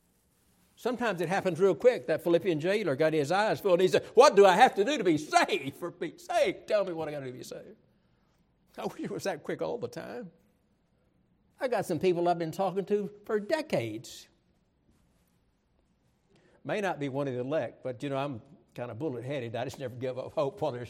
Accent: American